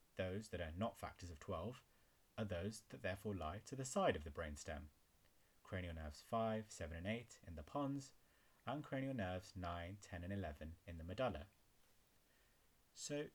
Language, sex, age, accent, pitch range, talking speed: English, male, 30-49, British, 85-110 Hz, 170 wpm